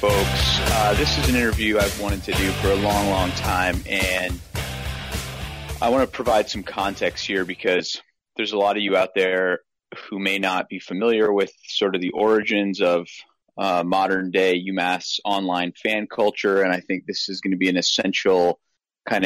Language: English